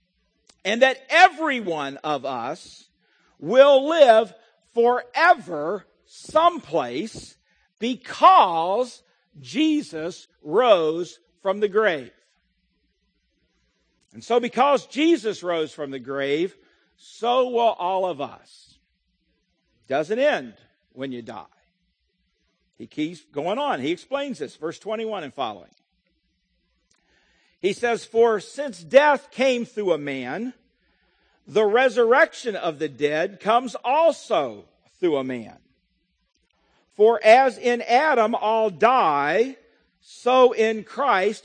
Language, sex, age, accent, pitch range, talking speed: English, male, 50-69, American, 175-265 Hz, 105 wpm